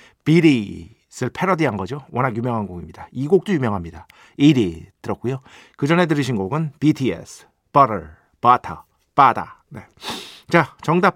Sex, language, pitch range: male, Korean, 105-155 Hz